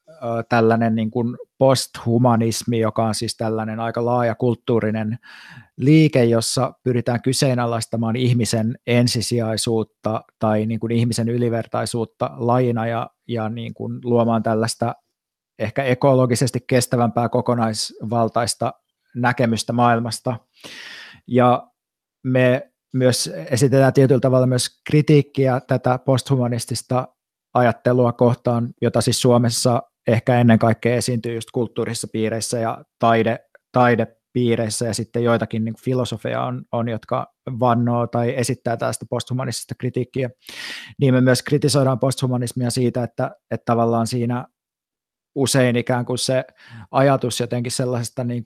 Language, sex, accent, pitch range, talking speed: Finnish, male, native, 115-125 Hz, 115 wpm